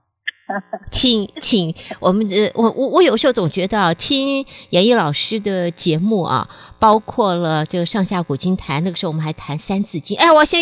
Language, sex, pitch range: Chinese, female, 170-235 Hz